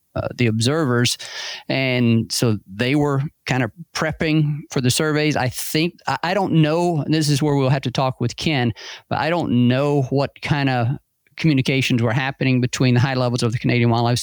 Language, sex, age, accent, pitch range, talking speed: English, male, 40-59, American, 115-135 Hz, 200 wpm